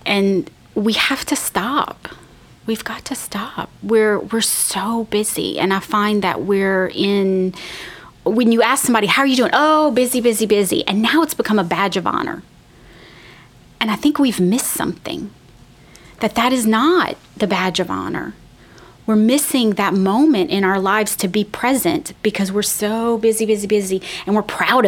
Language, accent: English, American